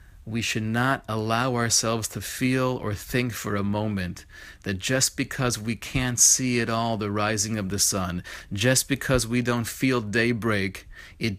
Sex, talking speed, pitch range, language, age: male, 170 wpm, 110-140 Hz, English, 30-49